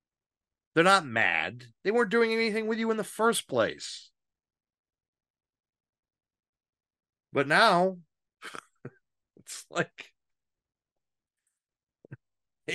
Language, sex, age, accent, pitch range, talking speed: English, male, 50-69, American, 95-135 Hz, 80 wpm